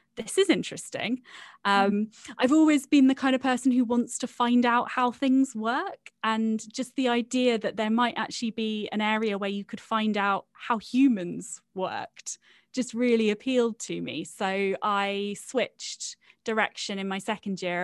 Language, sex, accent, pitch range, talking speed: English, female, British, 200-250 Hz, 170 wpm